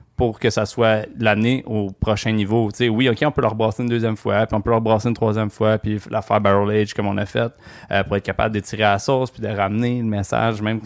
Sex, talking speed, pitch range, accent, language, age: male, 275 wpm, 100-115 Hz, Canadian, French, 20-39